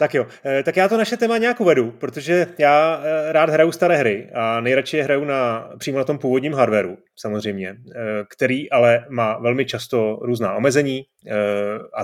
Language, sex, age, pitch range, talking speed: Czech, male, 30-49, 115-140 Hz, 160 wpm